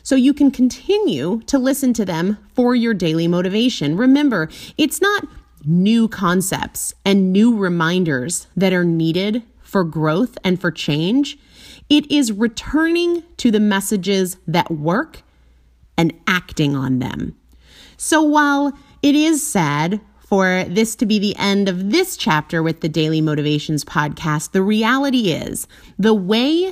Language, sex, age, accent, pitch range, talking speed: English, female, 30-49, American, 165-260 Hz, 145 wpm